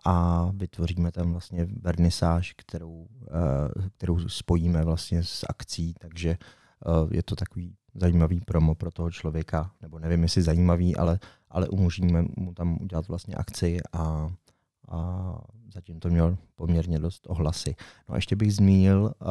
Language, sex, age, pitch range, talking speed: Czech, male, 30-49, 85-95 Hz, 140 wpm